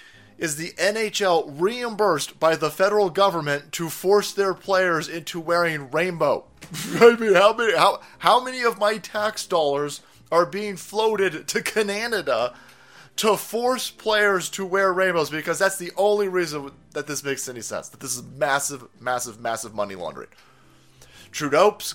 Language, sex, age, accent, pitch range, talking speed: English, male, 30-49, American, 150-235 Hz, 150 wpm